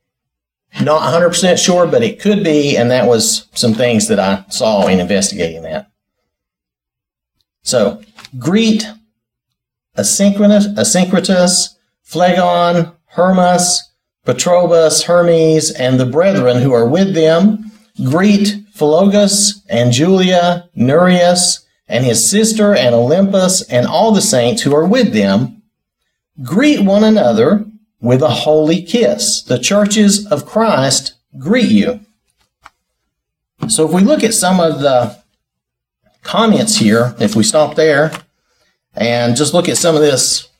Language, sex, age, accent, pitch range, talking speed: English, male, 50-69, American, 125-200 Hz, 125 wpm